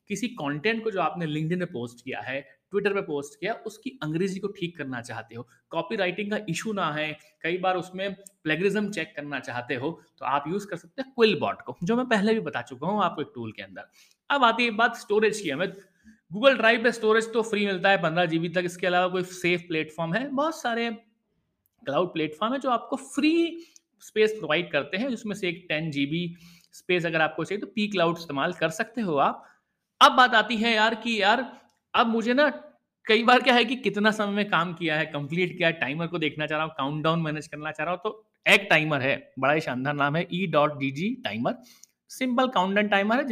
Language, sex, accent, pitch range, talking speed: Hindi, male, native, 155-220 Hz, 145 wpm